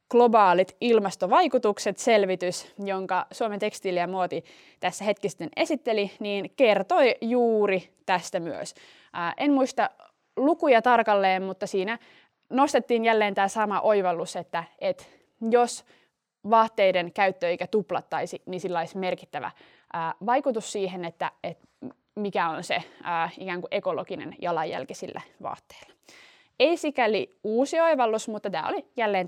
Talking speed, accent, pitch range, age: 125 wpm, native, 185-250 Hz, 20-39